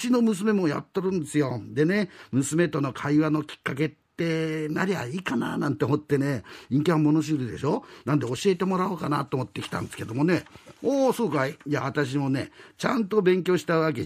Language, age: Japanese, 50-69